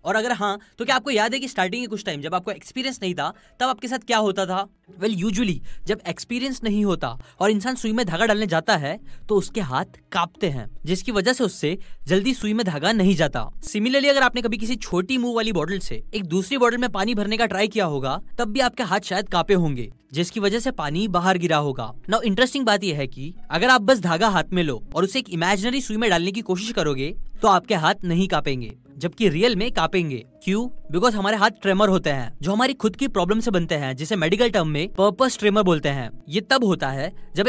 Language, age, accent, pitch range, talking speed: Hindi, 10-29, native, 165-230 Hz, 225 wpm